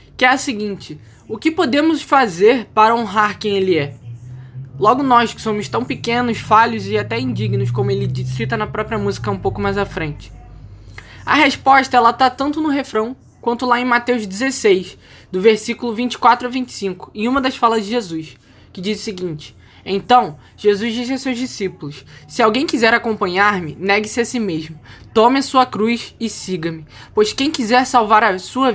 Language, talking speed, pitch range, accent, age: Portuguese, 180 wpm, 180-245 Hz, Brazilian, 10-29